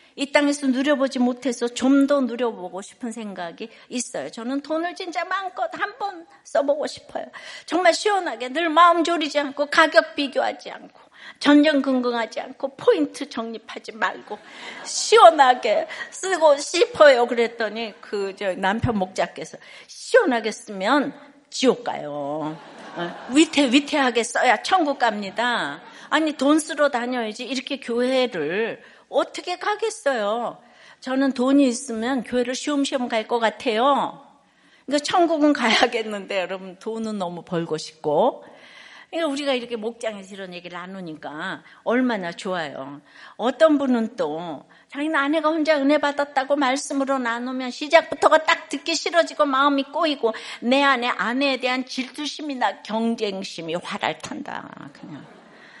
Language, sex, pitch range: Korean, female, 230-305 Hz